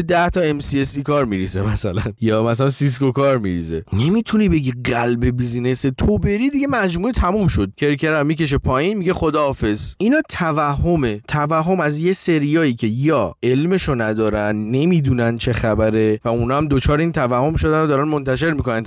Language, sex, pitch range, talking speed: Persian, male, 115-180 Hz, 160 wpm